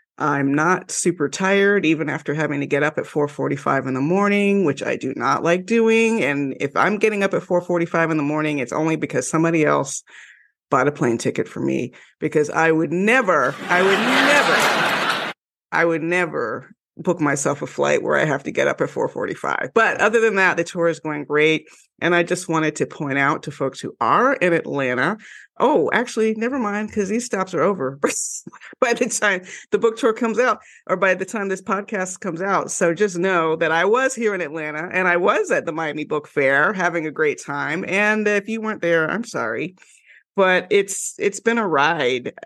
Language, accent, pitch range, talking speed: English, American, 150-200 Hz, 205 wpm